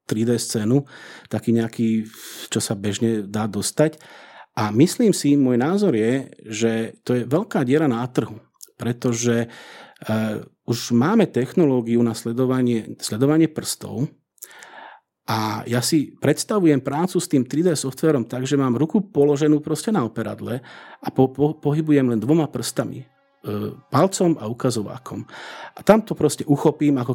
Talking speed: 140 wpm